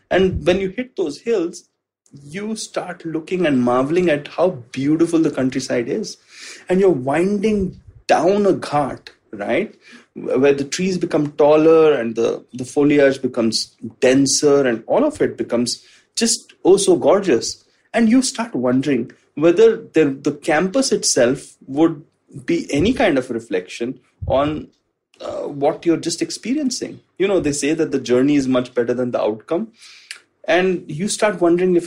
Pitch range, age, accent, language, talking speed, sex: 130-200 Hz, 30-49, Indian, English, 155 wpm, male